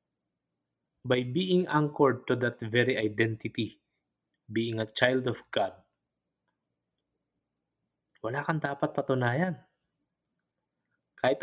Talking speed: 90 wpm